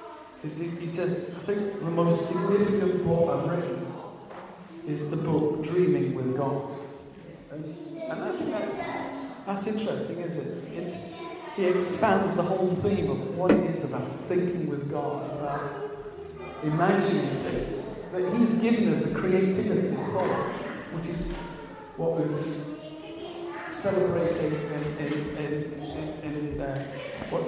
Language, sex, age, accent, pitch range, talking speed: English, male, 50-69, British, 150-195 Hz, 145 wpm